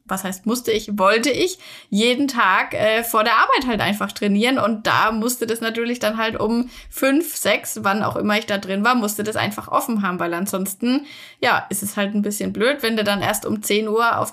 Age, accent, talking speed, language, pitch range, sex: 10-29, German, 225 wpm, German, 205-250 Hz, female